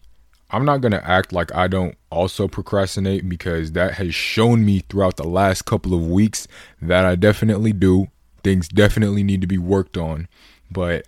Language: English